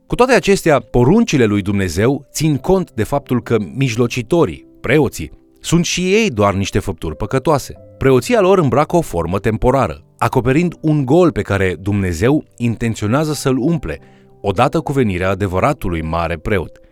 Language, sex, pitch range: Romanian, male, 95-135 Hz